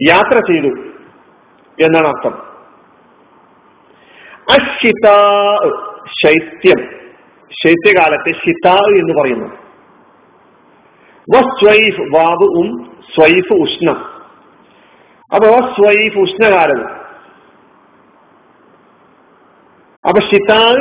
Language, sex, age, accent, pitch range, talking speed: Malayalam, male, 50-69, native, 180-230 Hz, 35 wpm